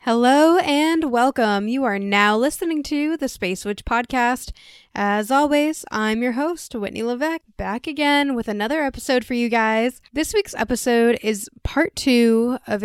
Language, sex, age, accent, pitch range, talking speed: English, female, 10-29, American, 200-245 Hz, 160 wpm